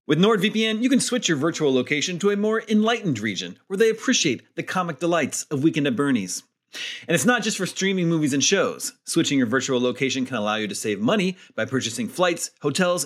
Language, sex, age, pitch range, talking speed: English, male, 30-49, 140-210 Hz, 210 wpm